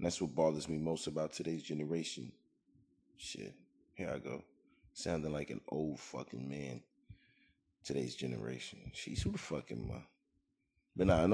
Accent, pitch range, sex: American, 70-90 Hz, male